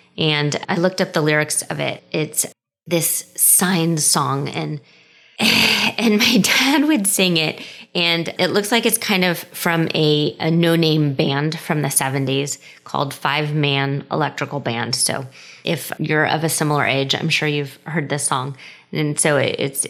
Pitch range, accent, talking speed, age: 150-185 Hz, American, 170 wpm, 20-39